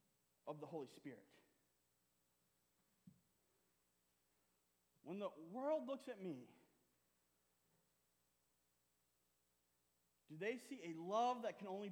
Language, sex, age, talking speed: English, male, 30-49, 90 wpm